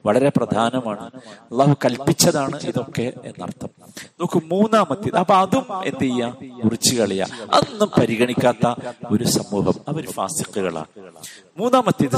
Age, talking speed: 50-69, 85 wpm